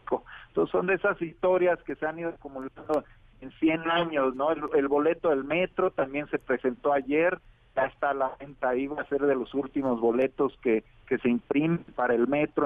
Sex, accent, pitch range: male, Mexican, 125-155 Hz